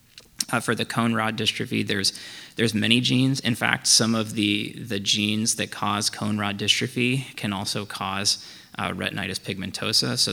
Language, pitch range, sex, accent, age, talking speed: English, 100-110 Hz, male, American, 20-39, 170 wpm